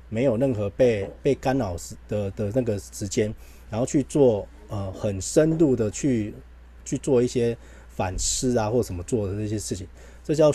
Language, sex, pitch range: Chinese, male, 100-130 Hz